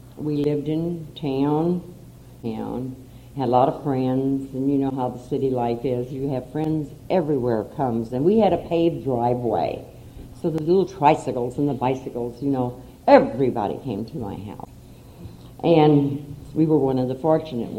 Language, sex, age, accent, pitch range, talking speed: English, female, 60-79, American, 125-160 Hz, 170 wpm